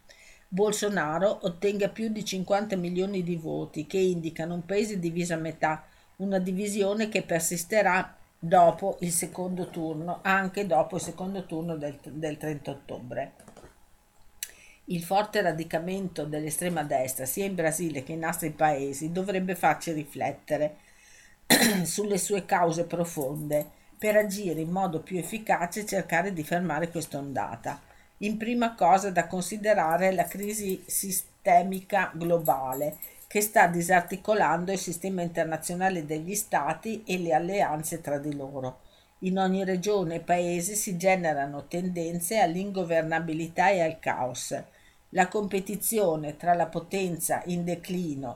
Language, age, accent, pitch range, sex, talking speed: Italian, 50-69, native, 155-190 Hz, female, 130 wpm